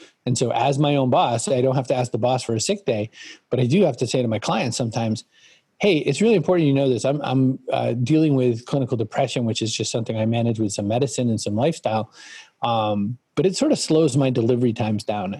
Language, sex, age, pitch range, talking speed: English, male, 40-59, 115-145 Hz, 245 wpm